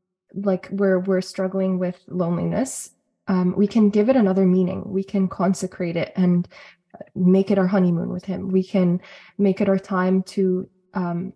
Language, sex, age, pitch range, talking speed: English, female, 20-39, 190-225 Hz, 170 wpm